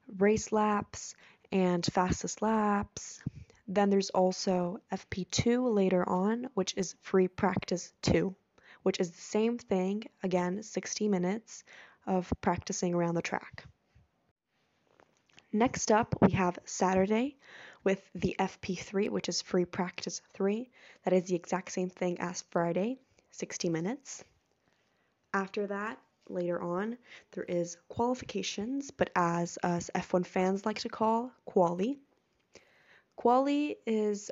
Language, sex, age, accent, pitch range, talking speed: English, female, 10-29, American, 180-215 Hz, 120 wpm